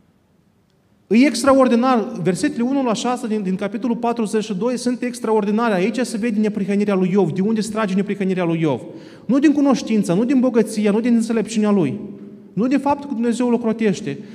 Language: Romanian